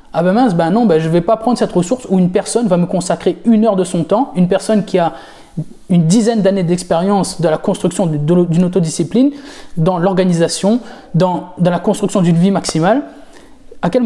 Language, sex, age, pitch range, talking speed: French, male, 20-39, 170-215 Hz, 210 wpm